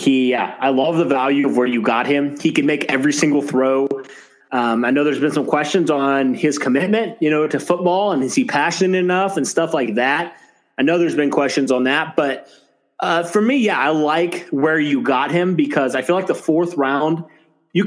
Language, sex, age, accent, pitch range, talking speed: English, male, 30-49, American, 135-175 Hz, 220 wpm